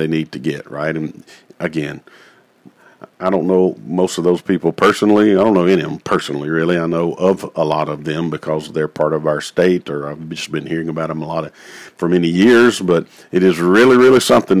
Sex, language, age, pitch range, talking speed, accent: male, English, 50-69, 80-100 Hz, 225 wpm, American